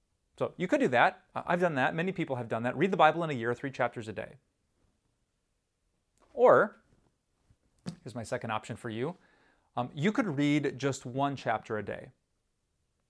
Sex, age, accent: male, 30-49, American